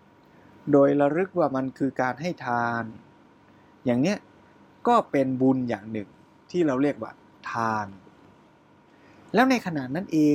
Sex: male